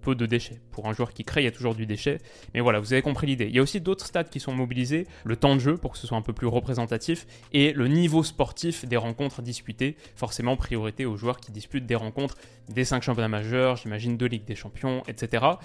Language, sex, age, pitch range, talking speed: French, male, 20-39, 120-155 Hz, 250 wpm